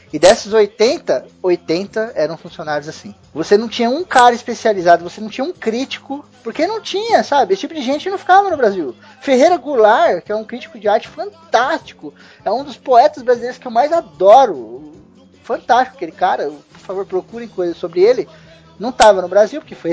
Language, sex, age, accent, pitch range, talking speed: Portuguese, male, 20-39, Brazilian, 185-275 Hz, 190 wpm